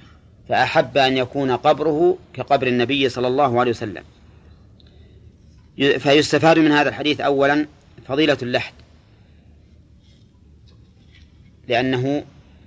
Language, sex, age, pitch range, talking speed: Arabic, male, 40-59, 95-135 Hz, 85 wpm